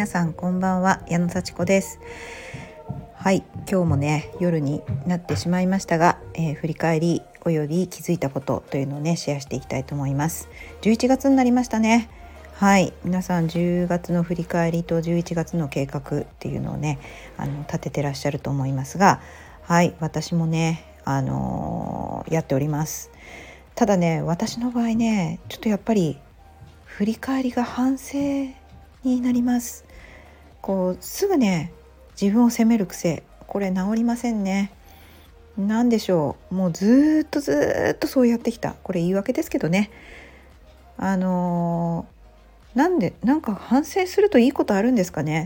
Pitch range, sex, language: 150-210 Hz, female, Japanese